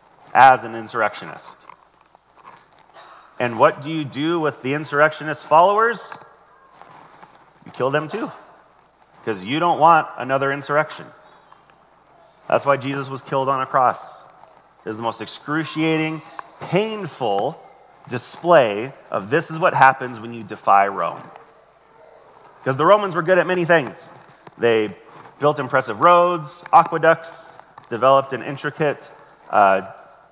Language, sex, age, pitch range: English, male, 30-49, 130-170 Hz